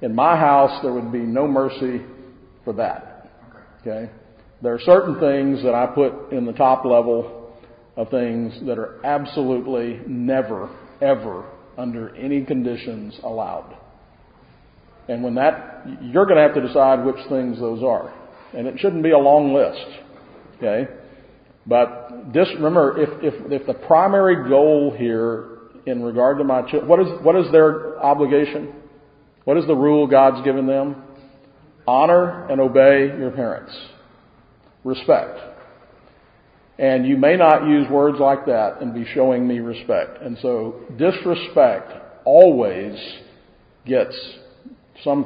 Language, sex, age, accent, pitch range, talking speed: English, male, 50-69, American, 125-150 Hz, 140 wpm